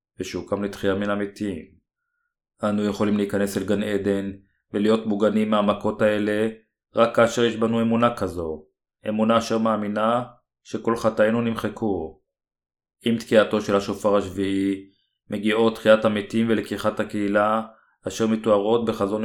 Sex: male